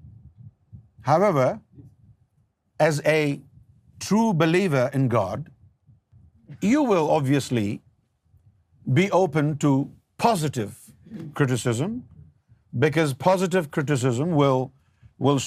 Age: 50-69